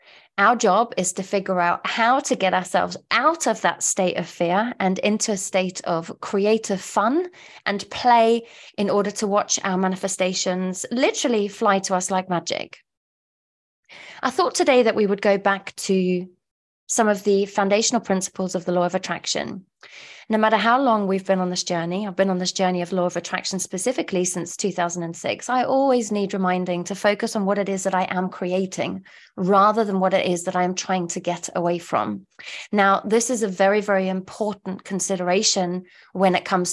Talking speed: 190 wpm